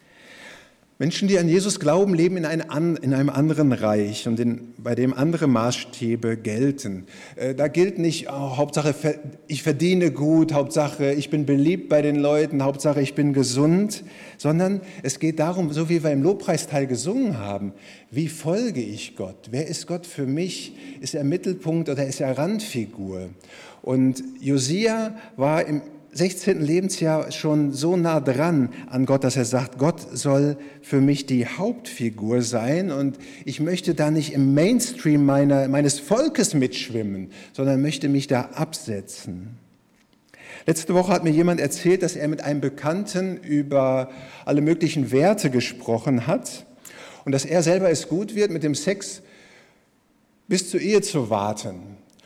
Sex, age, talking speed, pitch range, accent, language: male, 50-69, 150 wpm, 135-170 Hz, German, German